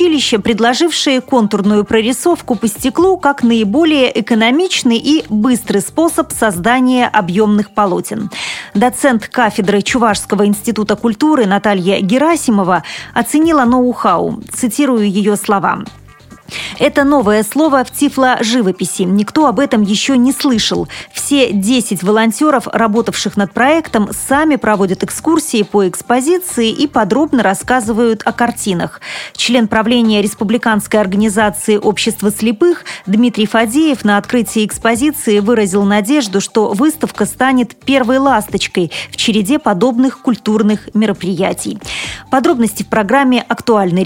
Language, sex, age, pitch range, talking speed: Russian, female, 30-49, 210-265 Hz, 110 wpm